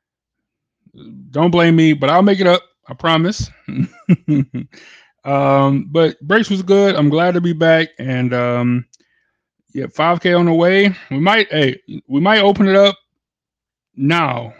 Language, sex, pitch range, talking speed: English, male, 135-185 Hz, 150 wpm